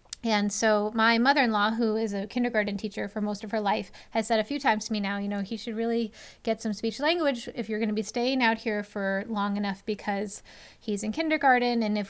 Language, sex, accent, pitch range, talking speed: English, female, American, 215-255 Hz, 240 wpm